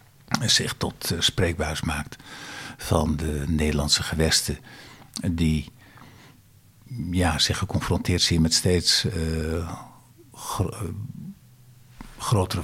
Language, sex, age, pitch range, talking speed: Dutch, male, 60-79, 80-105 Hz, 75 wpm